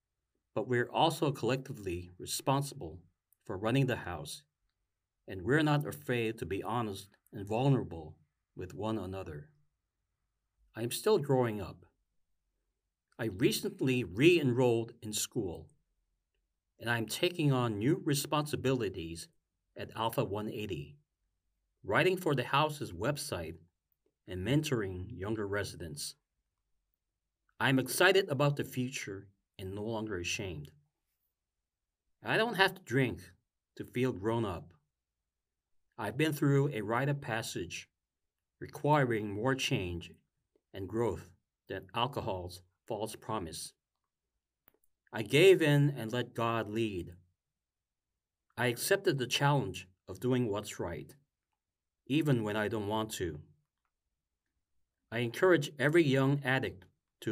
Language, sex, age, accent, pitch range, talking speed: English, male, 40-59, American, 90-130 Hz, 115 wpm